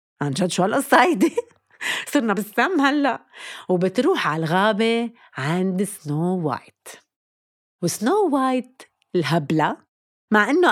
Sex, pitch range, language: female, 170-235 Hz, Arabic